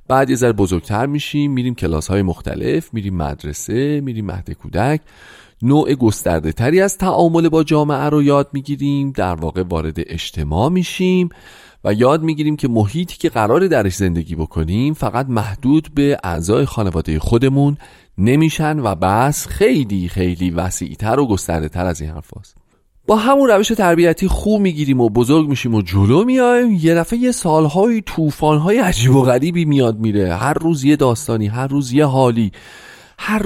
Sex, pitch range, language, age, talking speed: male, 105-165 Hz, Persian, 30-49, 155 wpm